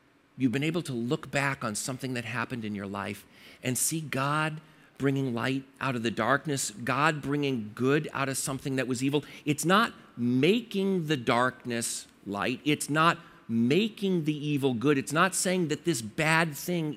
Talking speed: 175 wpm